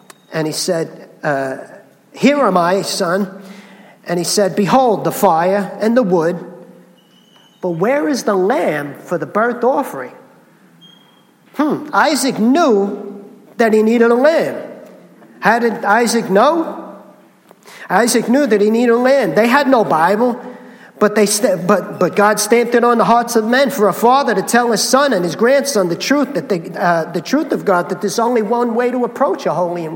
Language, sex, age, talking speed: English, male, 50-69, 180 wpm